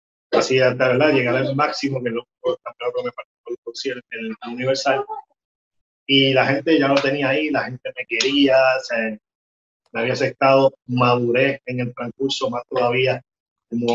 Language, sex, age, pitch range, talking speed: Spanish, male, 30-49, 120-150 Hz, 140 wpm